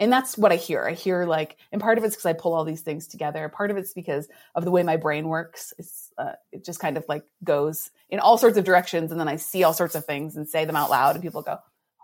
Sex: female